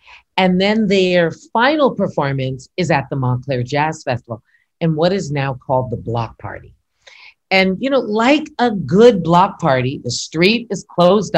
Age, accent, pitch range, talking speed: 50-69, American, 135-190 Hz, 165 wpm